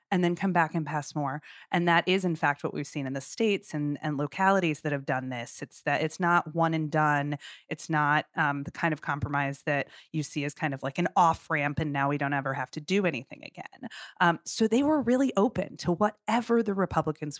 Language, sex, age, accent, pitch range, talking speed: English, female, 30-49, American, 150-190 Hz, 240 wpm